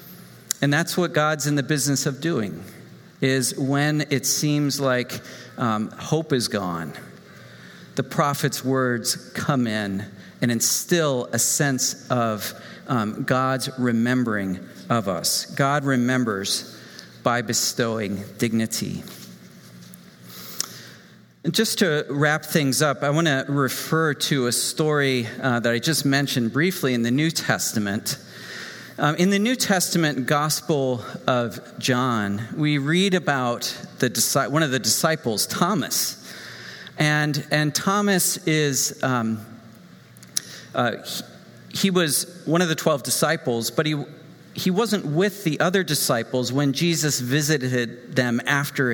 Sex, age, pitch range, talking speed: male, 40-59, 120-160 Hz, 130 wpm